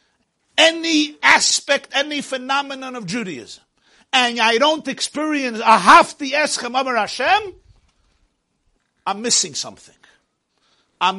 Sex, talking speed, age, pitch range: male, 90 wpm, 50-69, 215-300 Hz